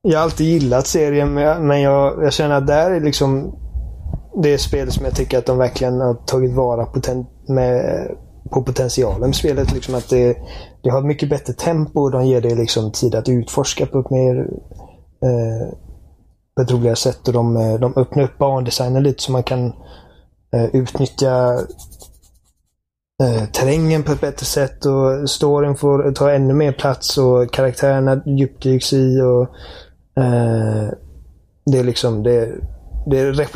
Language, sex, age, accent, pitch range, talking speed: Swedish, male, 20-39, native, 120-140 Hz, 155 wpm